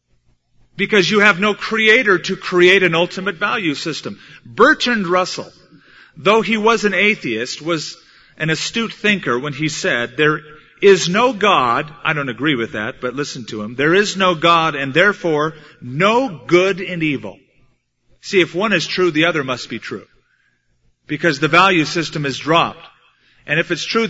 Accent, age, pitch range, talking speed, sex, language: American, 40-59, 145-195 Hz, 170 wpm, male, English